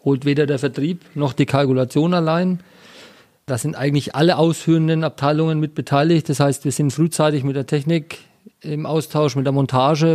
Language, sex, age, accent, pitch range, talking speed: German, male, 40-59, German, 140-170 Hz, 170 wpm